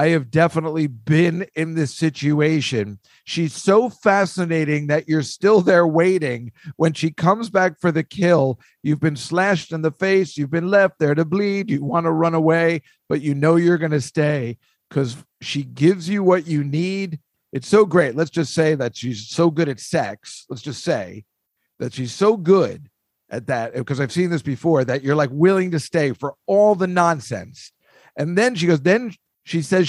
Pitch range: 150-190 Hz